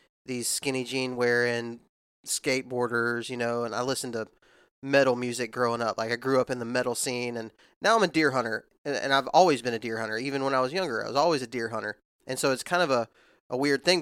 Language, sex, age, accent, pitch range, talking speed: English, male, 20-39, American, 120-140 Hz, 240 wpm